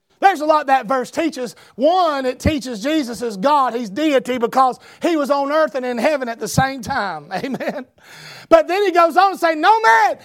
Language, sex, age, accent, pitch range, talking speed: English, male, 40-59, American, 235-380 Hz, 210 wpm